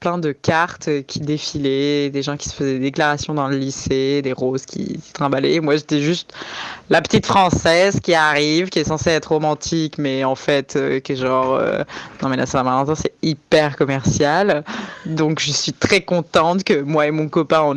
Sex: female